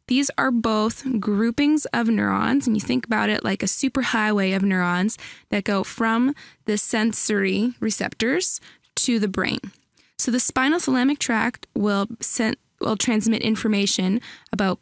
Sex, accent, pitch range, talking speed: female, American, 205-245 Hz, 145 wpm